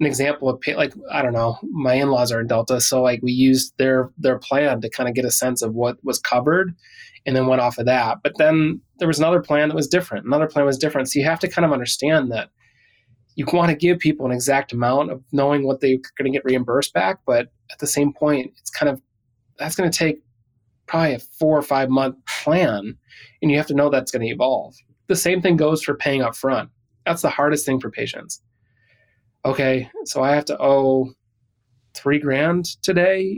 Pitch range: 125-150 Hz